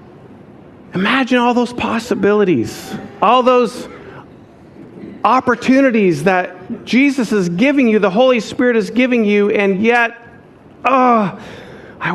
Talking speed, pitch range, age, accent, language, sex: 110 wpm, 170-235 Hz, 50-69, American, English, male